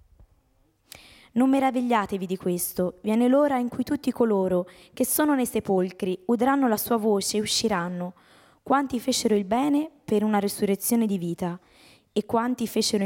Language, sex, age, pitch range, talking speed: Italian, female, 20-39, 190-240 Hz, 145 wpm